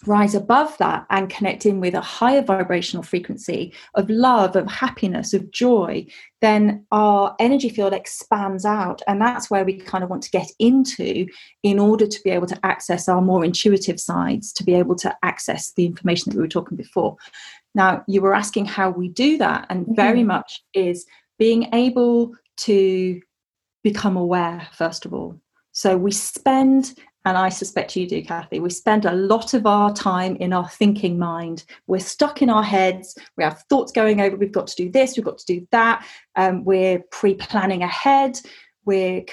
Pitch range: 185-235 Hz